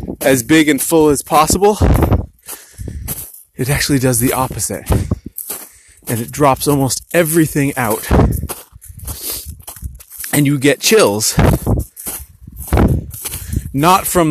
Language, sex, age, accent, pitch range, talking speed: English, male, 30-49, American, 115-155 Hz, 95 wpm